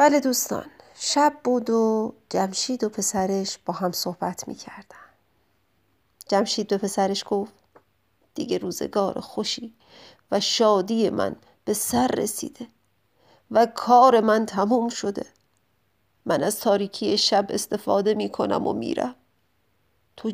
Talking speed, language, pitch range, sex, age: 115 wpm, English, 200-250 Hz, female, 40-59